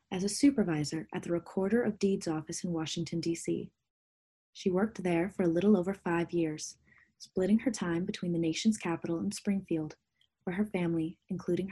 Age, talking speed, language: 20-39, 175 wpm, English